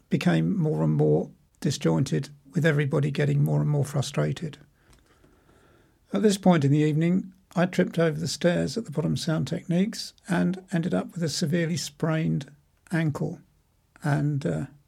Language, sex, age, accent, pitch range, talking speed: English, male, 60-79, British, 145-165 Hz, 150 wpm